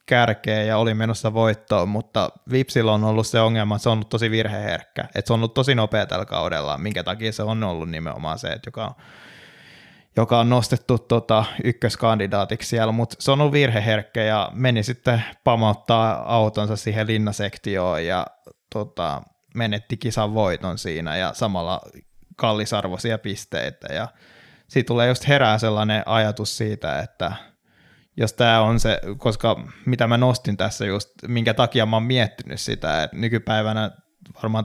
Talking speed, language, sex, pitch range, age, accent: 160 wpm, Finnish, male, 105-115 Hz, 20-39, native